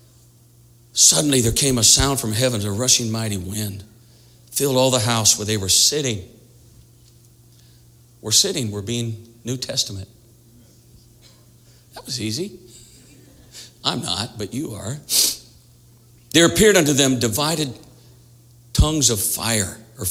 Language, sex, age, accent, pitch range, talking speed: English, male, 60-79, American, 115-130 Hz, 125 wpm